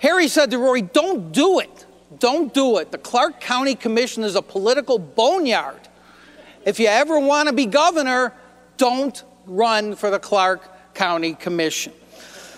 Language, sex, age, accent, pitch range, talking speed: English, male, 50-69, American, 190-260 Hz, 155 wpm